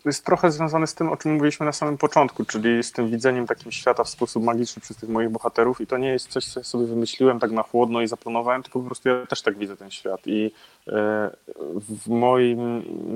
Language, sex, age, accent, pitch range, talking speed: Polish, male, 30-49, native, 110-135 Hz, 230 wpm